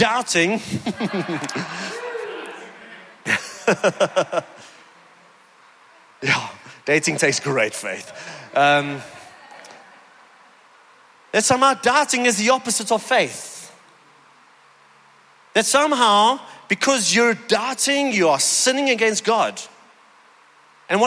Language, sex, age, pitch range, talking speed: English, male, 30-49, 160-230 Hz, 70 wpm